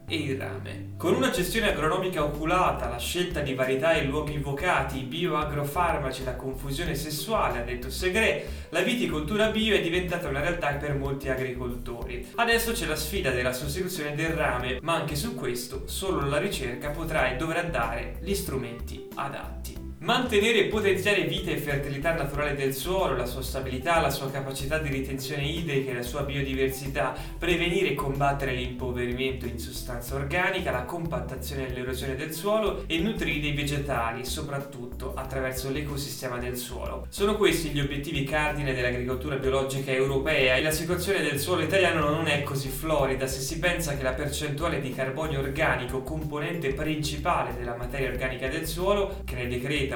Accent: native